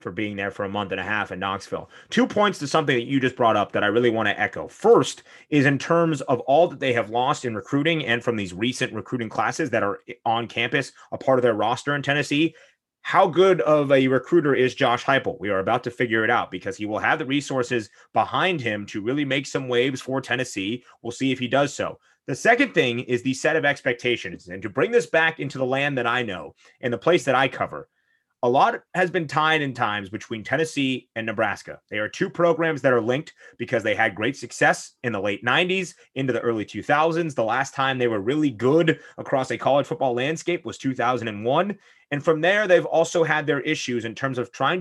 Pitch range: 120-160 Hz